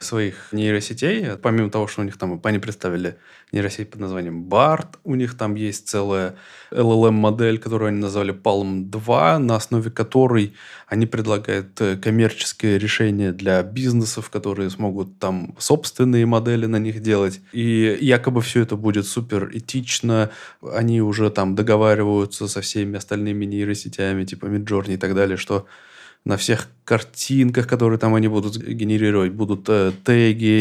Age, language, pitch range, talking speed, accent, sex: 20-39, Russian, 100-115 Hz, 145 wpm, native, male